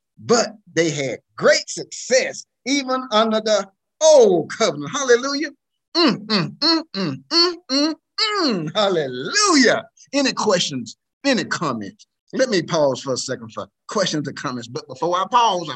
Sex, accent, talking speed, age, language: male, American, 145 wpm, 50-69, English